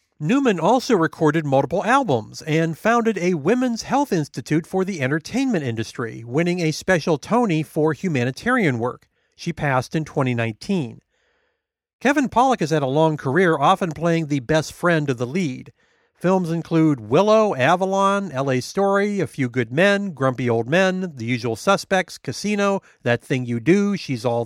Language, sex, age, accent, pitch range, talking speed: English, male, 40-59, American, 135-195 Hz, 155 wpm